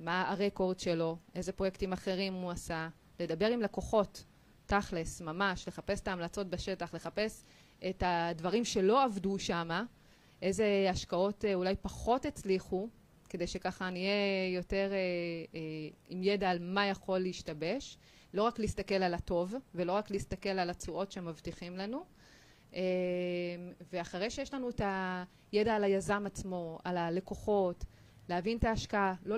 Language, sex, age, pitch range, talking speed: Hebrew, female, 30-49, 180-220 Hz, 135 wpm